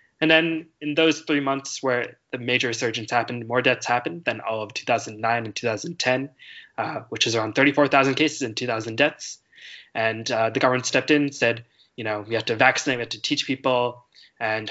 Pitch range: 115-135 Hz